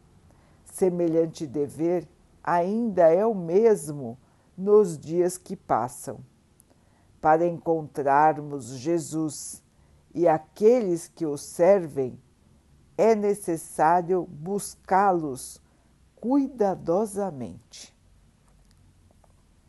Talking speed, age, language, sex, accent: 65 wpm, 60-79, Portuguese, female, Brazilian